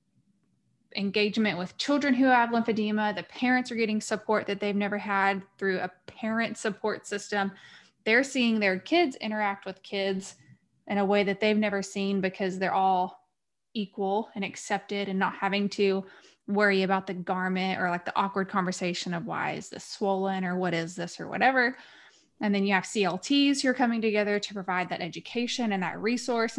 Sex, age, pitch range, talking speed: female, 20-39, 195-240 Hz, 180 wpm